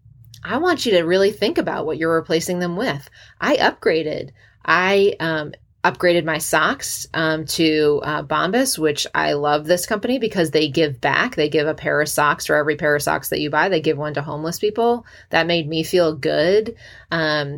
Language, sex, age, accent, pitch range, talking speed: English, female, 30-49, American, 150-185 Hz, 200 wpm